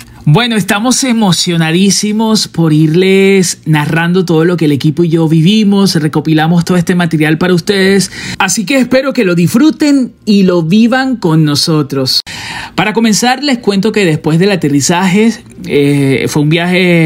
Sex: male